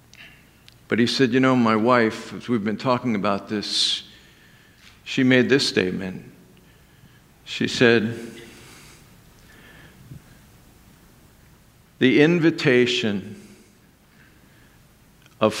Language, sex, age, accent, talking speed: English, male, 50-69, American, 85 wpm